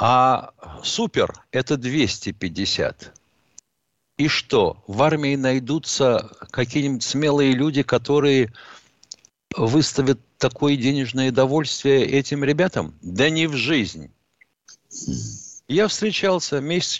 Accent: native